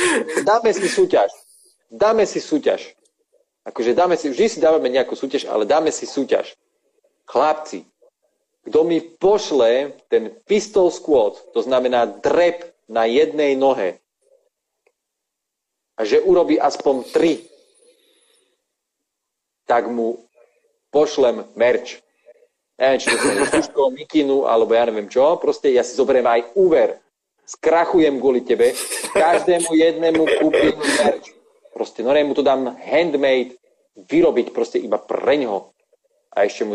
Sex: male